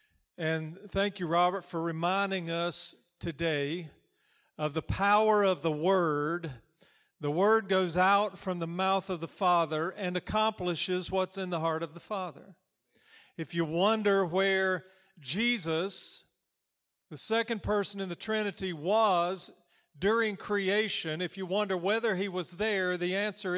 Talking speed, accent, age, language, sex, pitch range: 145 wpm, American, 50-69, English, male, 180-215 Hz